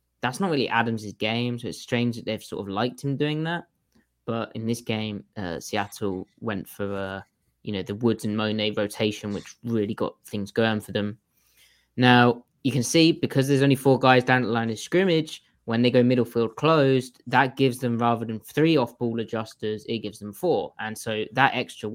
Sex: male